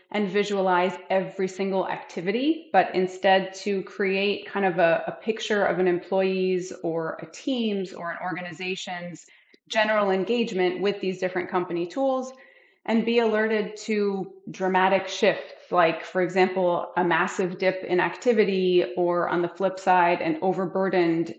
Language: English